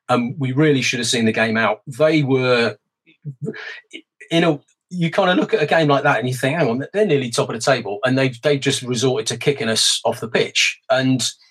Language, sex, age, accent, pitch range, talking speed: English, male, 30-49, British, 125-165 Hz, 235 wpm